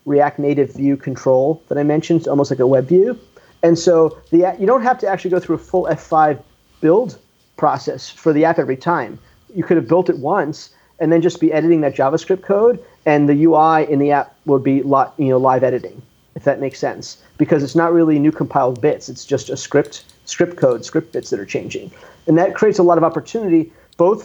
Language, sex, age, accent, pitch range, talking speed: English, male, 40-59, American, 140-170 Hz, 220 wpm